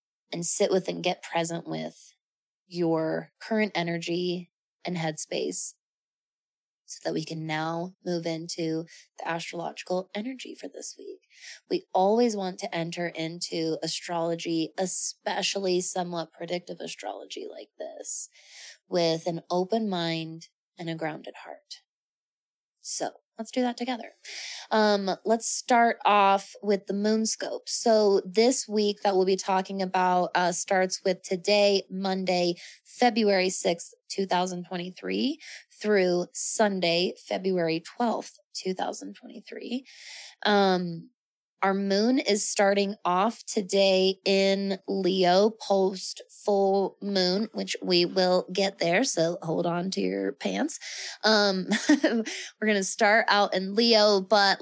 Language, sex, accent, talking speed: English, female, American, 125 wpm